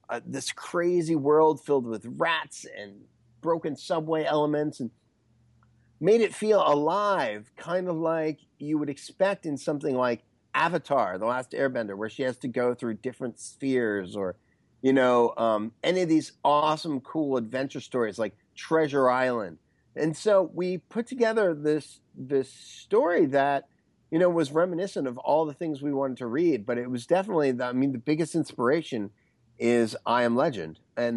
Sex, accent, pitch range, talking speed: male, American, 115-155 Hz, 165 wpm